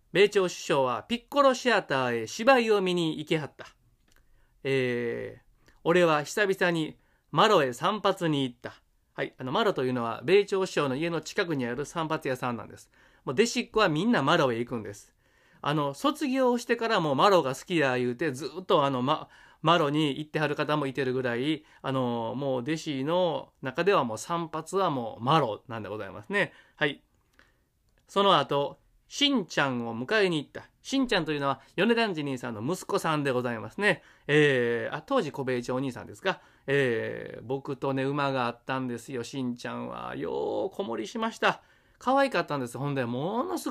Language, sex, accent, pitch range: Japanese, male, native, 130-185 Hz